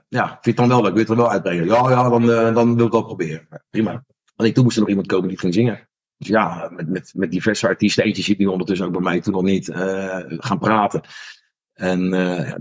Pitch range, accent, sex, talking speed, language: 95-115 Hz, Dutch, male, 245 wpm, Dutch